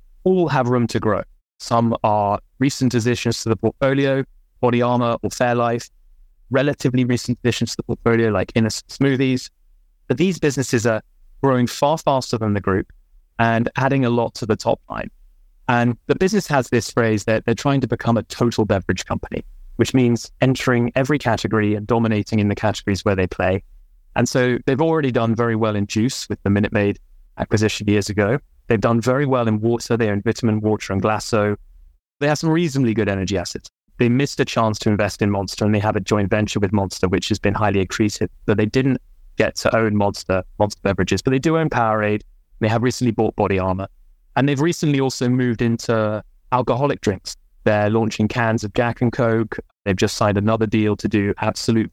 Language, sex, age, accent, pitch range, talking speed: English, male, 20-39, British, 105-125 Hz, 200 wpm